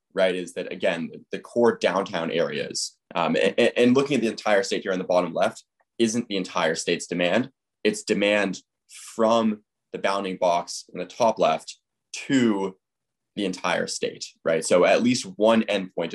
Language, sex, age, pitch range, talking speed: English, male, 20-39, 90-115 Hz, 170 wpm